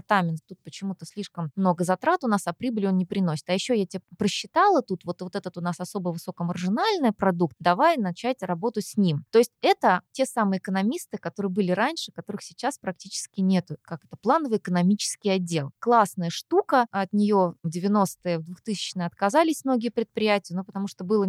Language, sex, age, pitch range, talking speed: Russian, female, 20-39, 180-225 Hz, 185 wpm